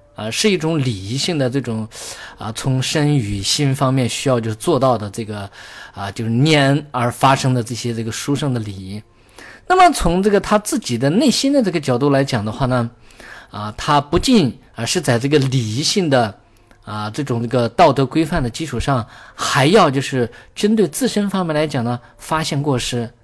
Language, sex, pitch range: Chinese, male, 115-150 Hz